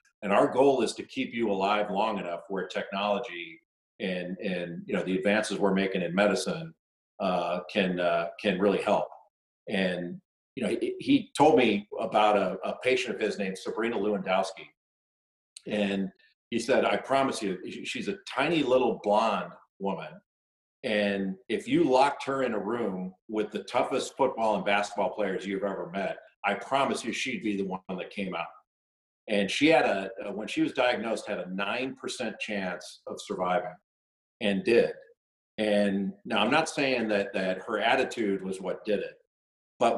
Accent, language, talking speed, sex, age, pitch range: American, English, 170 wpm, male, 40-59, 95-120 Hz